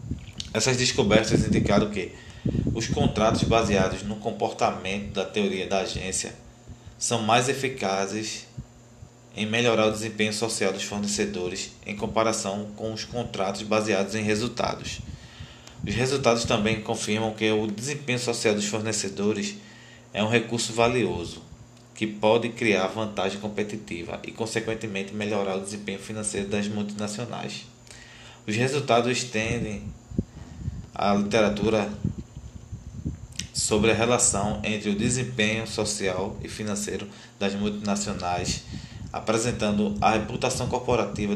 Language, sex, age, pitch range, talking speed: Portuguese, male, 20-39, 105-120 Hz, 115 wpm